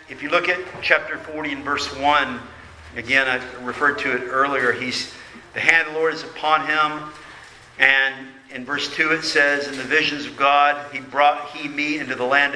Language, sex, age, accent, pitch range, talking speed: English, male, 50-69, American, 130-150 Hz, 195 wpm